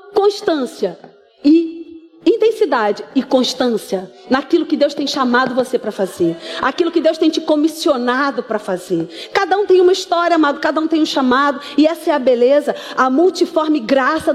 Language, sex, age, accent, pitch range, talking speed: Portuguese, female, 40-59, Brazilian, 270-360 Hz, 165 wpm